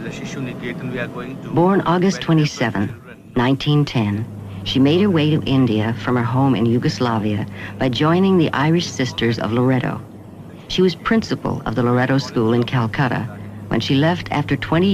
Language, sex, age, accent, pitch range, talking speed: English, female, 60-79, American, 110-150 Hz, 145 wpm